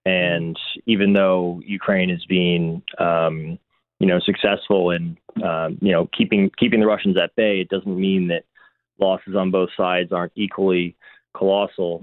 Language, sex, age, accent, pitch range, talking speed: English, male, 20-39, American, 90-100 Hz, 155 wpm